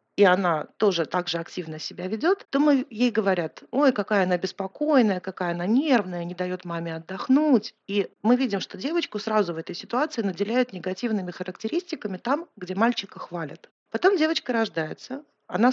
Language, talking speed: Russian, 165 wpm